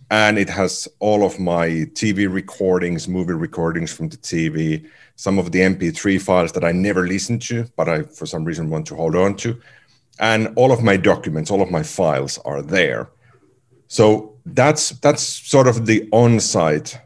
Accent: Finnish